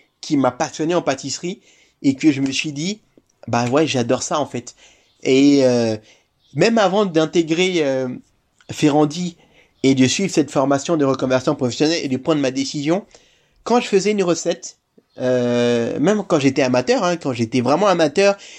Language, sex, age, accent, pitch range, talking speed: French, male, 30-49, French, 140-190 Hz, 170 wpm